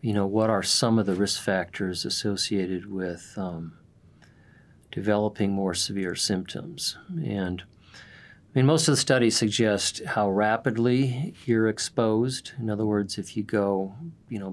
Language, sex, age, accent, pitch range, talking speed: English, male, 40-59, American, 100-115 Hz, 150 wpm